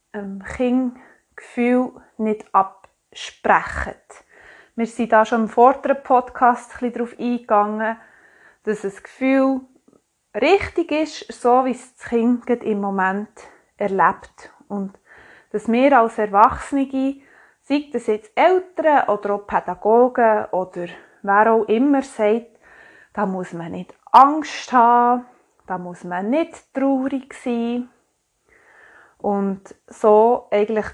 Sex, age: female, 20-39